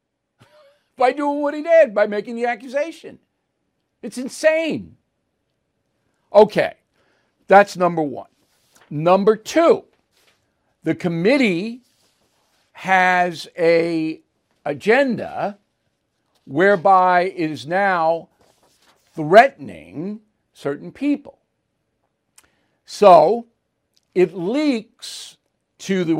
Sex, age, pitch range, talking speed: male, 60-79, 160-255 Hz, 80 wpm